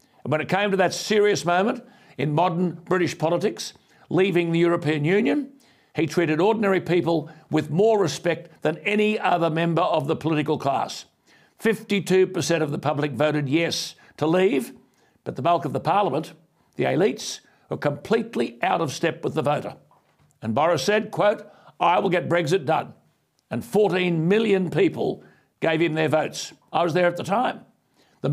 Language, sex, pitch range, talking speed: English, male, 155-190 Hz, 165 wpm